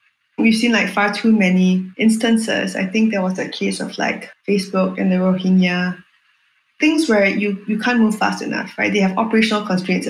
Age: 20-39